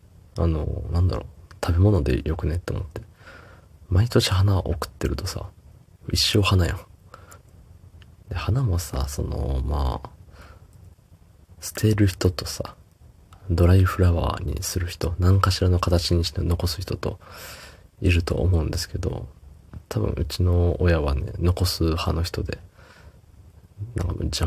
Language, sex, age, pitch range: Japanese, male, 20-39, 85-95 Hz